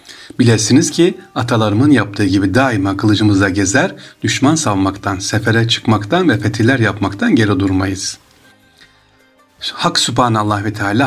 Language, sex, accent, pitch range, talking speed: Turkish, male, native, 100-120 Hz, 115 wpm